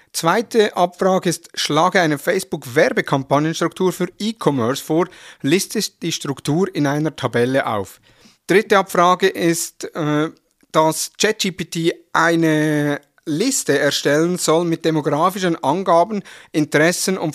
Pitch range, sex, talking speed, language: 140-175 Hz, male, 105 wpm, German